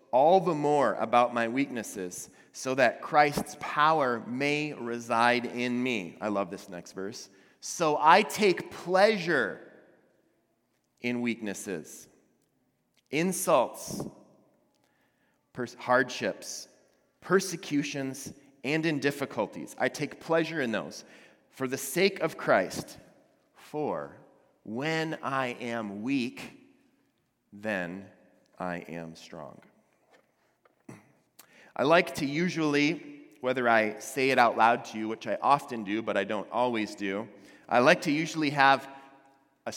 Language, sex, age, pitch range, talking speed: English, male, 30-49, 115-150 Hz, 115 wpm